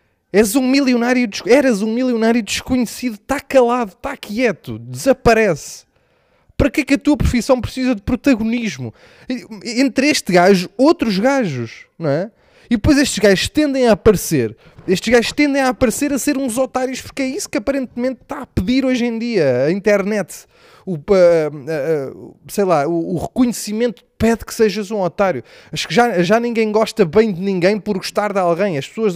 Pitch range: 200-265 Hz